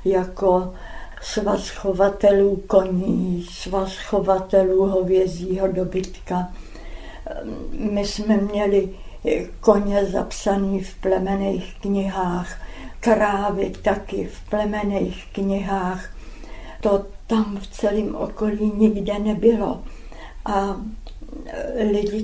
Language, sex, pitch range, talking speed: Czech, female, 195-215 Hz, 75 wpm